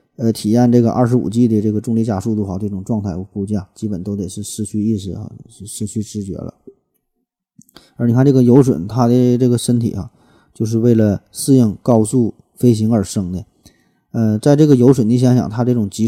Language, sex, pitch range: Chinese, male, 105-125 Hz